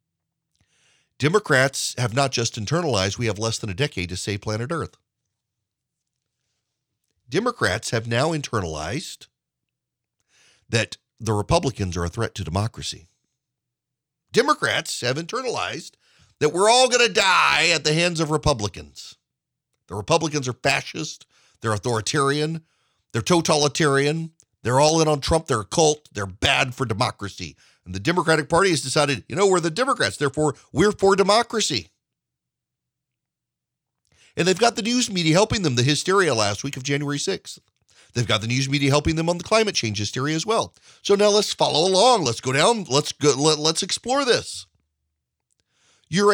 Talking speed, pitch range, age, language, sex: 155 wpm, 110-165 Hz, 40-59, English, male